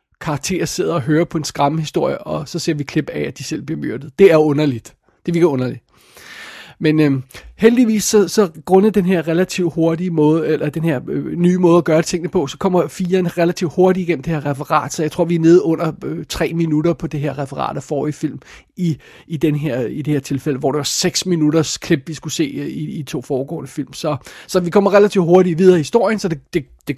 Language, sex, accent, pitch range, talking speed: Danish, male, native, 155-195 Hz, 240 wpm